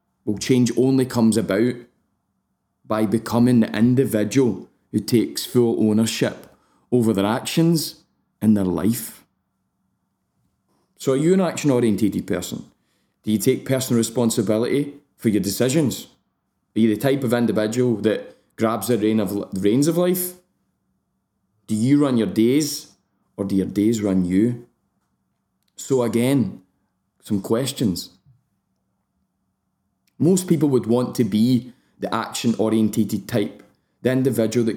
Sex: male